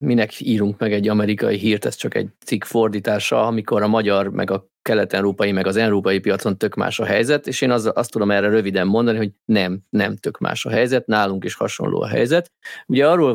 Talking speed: 215 wpm